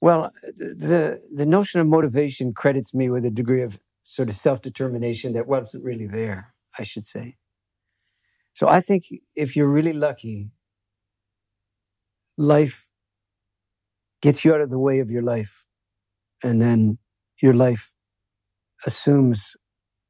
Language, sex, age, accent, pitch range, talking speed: English, male, 60-79, American, 100-130 Hz, 130 wpm